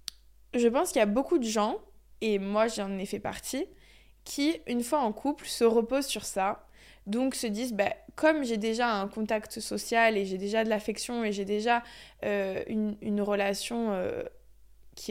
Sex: female